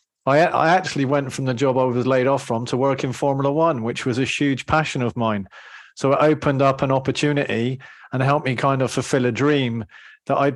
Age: 40-59